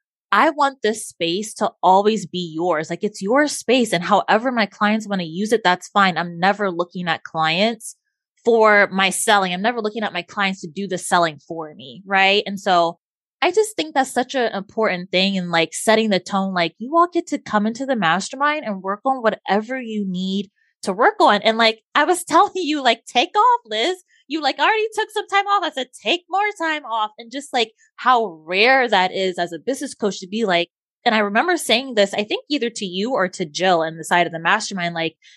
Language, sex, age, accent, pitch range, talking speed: English, female, 20-39, American, 185-270 Hz, 225 wpm